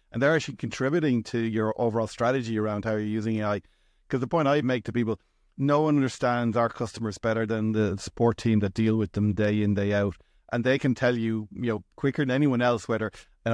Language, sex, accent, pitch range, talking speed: English, male, Irish, 110-125 Hz, 225 wpm